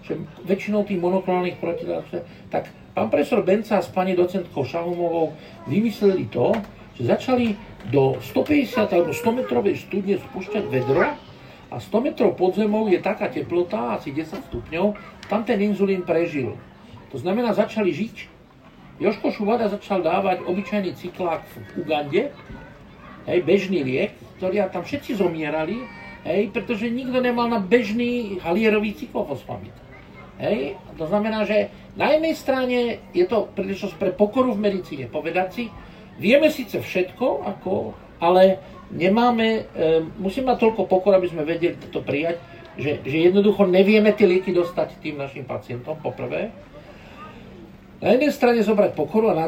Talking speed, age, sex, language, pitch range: 140 wpm, 50-69, male, Slovak, 170-220 Hz